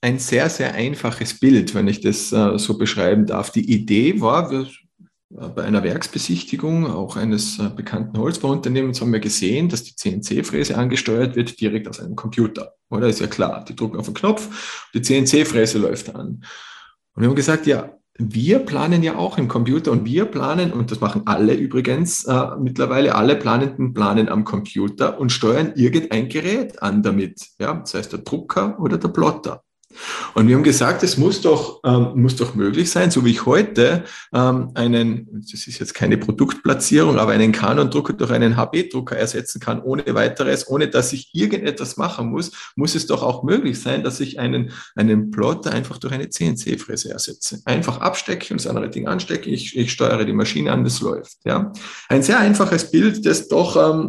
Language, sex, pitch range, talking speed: German, male, 110-145 Hz, 185 wpm